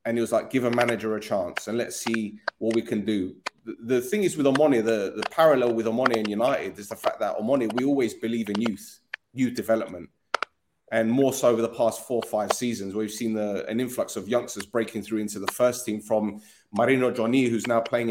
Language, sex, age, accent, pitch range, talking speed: English, male, 30-49, British, 110-125 Hz, 230 wpm